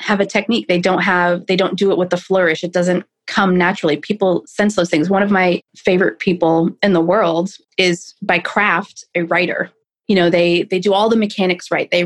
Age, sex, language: 20-39, female, English